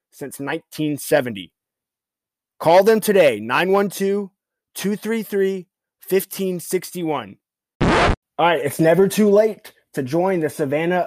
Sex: male